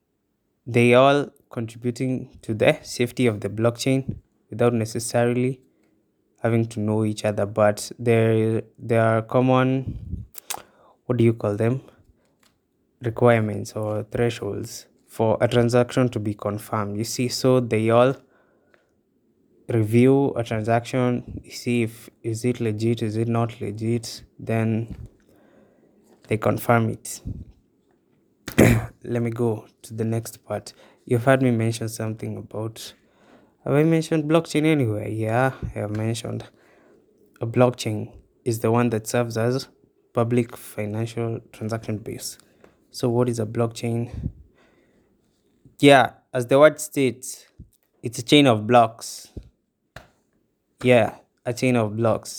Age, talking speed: 20-39, 125 wpm